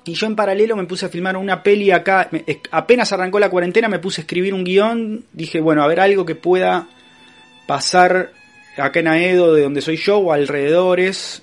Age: 30-49